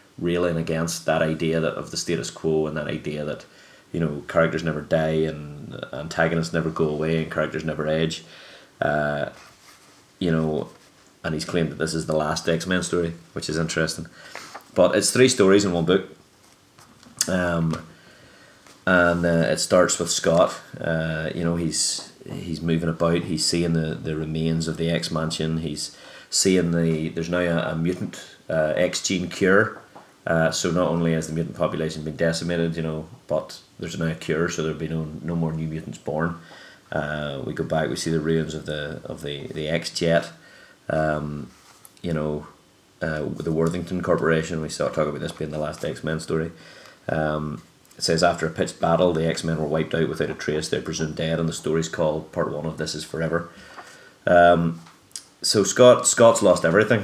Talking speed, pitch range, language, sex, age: 185 wpm, 80-85 Hz, English, male, 30-49